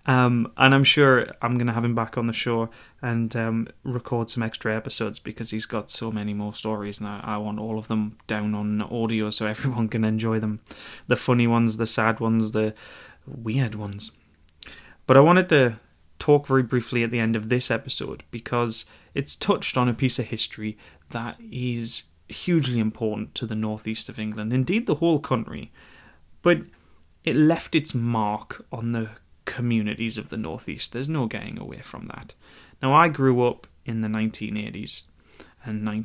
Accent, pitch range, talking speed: British, 110-130 Hz, 180 wpm